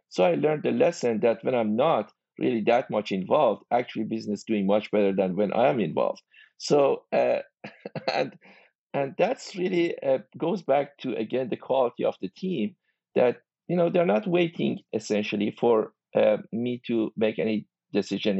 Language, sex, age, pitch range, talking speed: English, male, 50-69, 100-145 Hz, 175 wpm